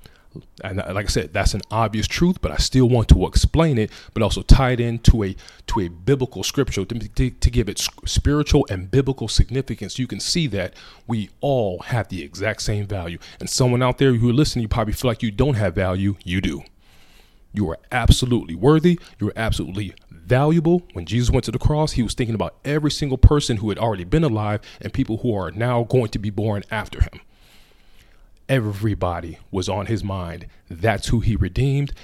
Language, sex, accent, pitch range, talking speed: English, male, American, 100-125 Hz, 200 wpm